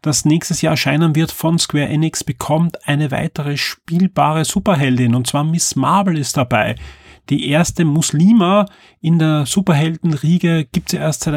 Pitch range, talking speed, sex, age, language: 135-165 Hz, 160 wpm, male, 30-49, German